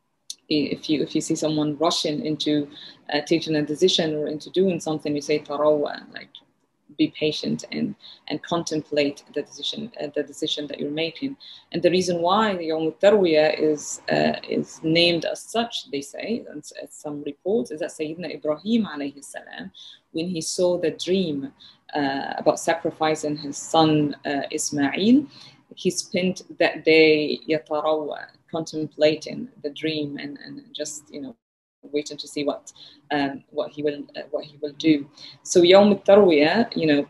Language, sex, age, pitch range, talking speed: English, female, 20-39, 150-180 Hz, 160 wpm